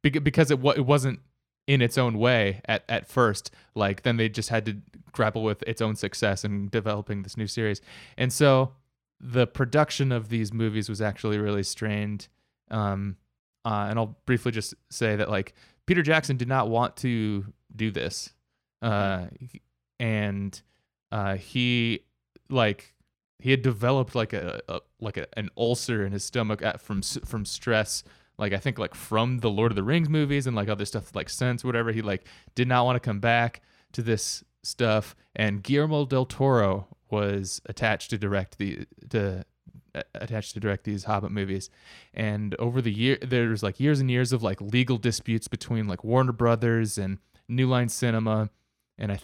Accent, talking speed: American, 180 wpm